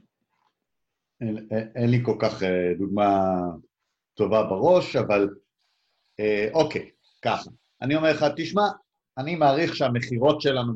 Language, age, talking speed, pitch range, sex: English, 50-69, 125 wpm, 115-185 Hz, male